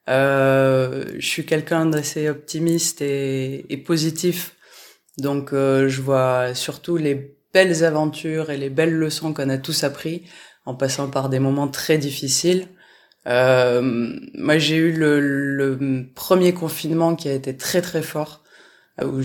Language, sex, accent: French, female, French